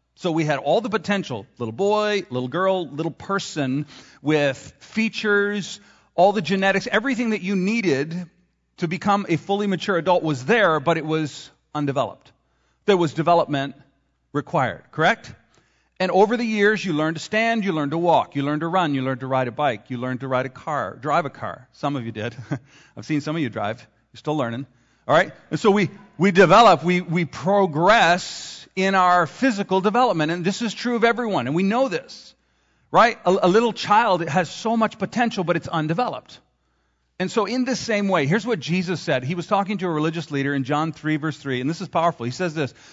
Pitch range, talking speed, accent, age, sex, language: 140-200 Hz, 205 wpm, American, 40-59, male, English